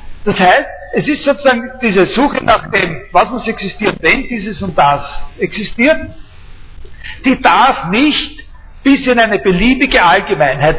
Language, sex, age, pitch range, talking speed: German, male, 60-79, 185-245 Hz, 140 wpm